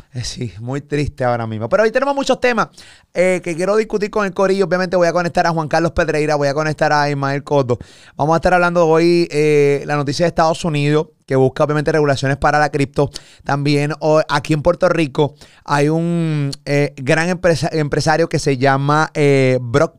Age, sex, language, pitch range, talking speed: 30-49, male, Spanish, 140-175 Hz, 190 wpm